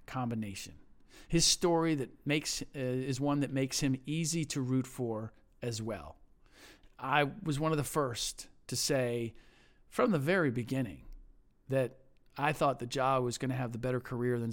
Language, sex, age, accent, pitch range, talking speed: English, male, 40-59, American, 115-140 Hz, 175 wpm